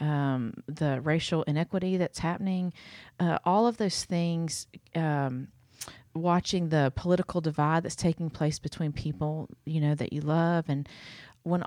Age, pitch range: 40-59, 145-170 Hz